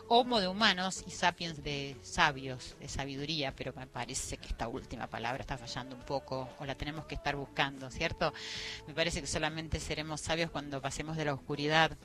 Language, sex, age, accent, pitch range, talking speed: Spanish, female, 30-49, Argentinian, 145-195 Hz, 190 wpm